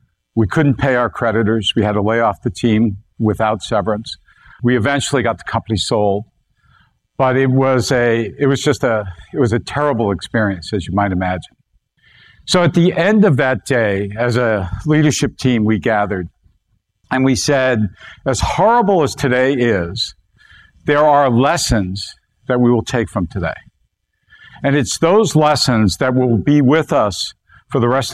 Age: 50-69